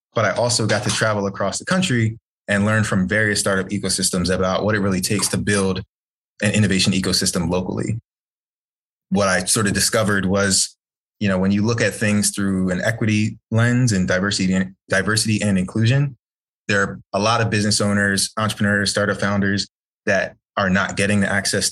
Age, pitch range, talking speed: 20-39, 95-110 Hz, 180 wpm